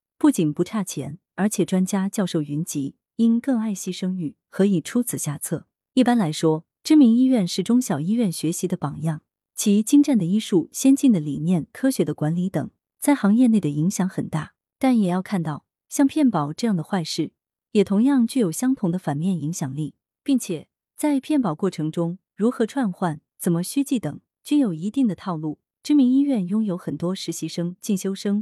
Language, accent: Chinese, native